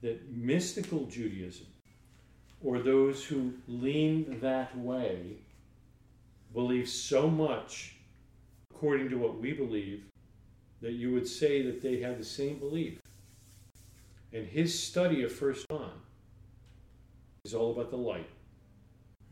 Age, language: 40-59, English